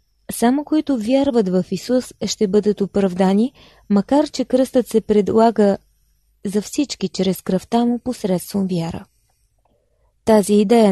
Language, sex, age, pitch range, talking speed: Bulgarian, female, 20-39, 195-255 Hz, 120 wpm